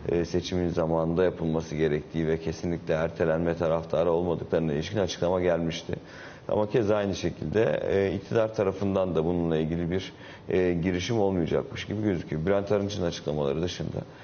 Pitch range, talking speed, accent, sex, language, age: 80-95 Hz, 135 wpm, native, male, Turkish, 40-59